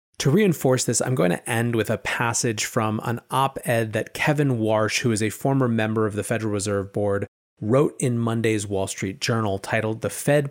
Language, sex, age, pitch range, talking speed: English, male, 30-49, 110-160 Hz, 200 wpm